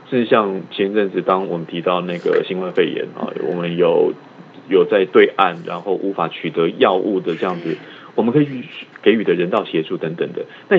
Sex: male